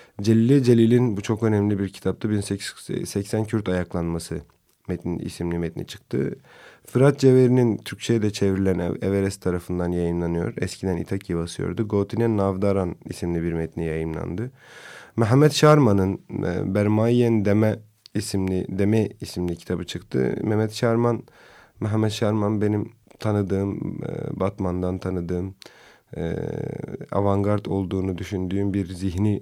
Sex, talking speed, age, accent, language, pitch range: male, 110 wpm, 30-49, native, Turkish, 90-115 Hz